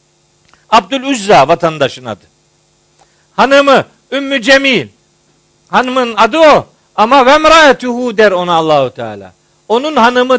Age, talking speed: 50-69, 105 wpm